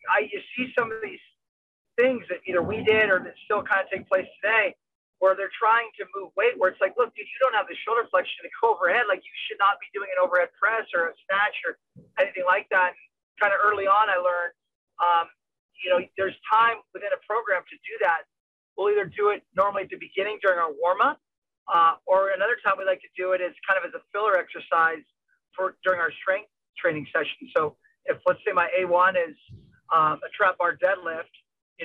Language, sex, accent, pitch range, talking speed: English, male, American, 180-240 Hz, 225 wpm